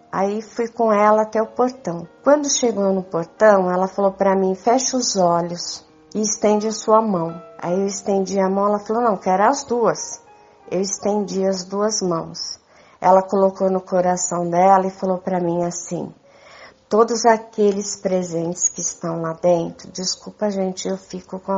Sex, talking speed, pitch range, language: female, 170 wpm, 185-215 Hz, Portuguese